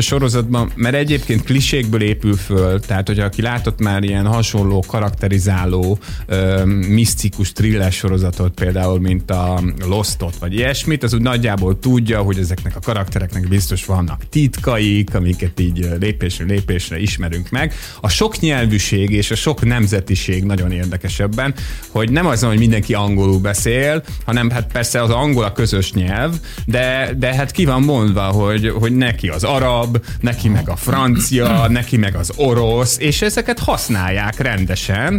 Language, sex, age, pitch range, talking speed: Hungarian, male, 30-49, 100-125 Hz, 150 wpm